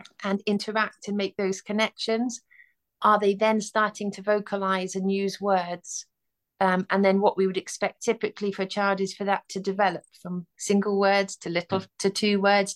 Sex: female